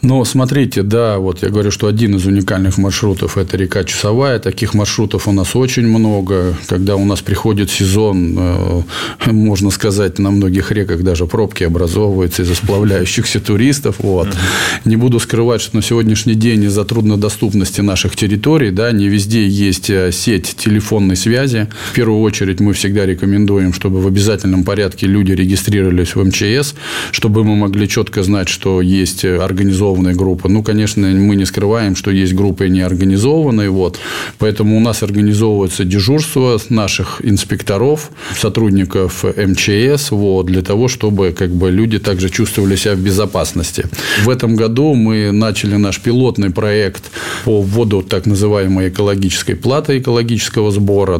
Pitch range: 95-110 Hz